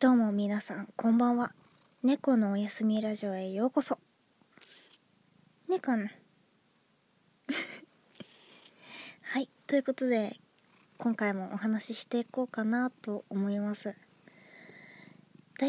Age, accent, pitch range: 20-39, native, 205-260 Hz